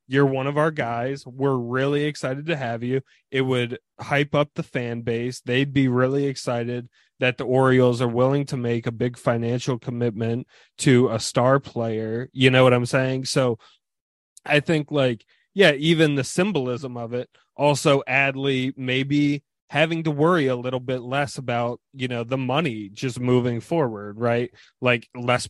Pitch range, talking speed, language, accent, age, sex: 120-140 Hz, 170 wpm, English, American, 20-39, male